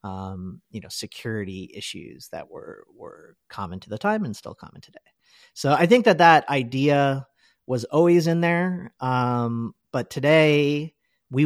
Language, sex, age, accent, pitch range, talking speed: English, male, 40-59, American, 110-145 Hz, 155 wpm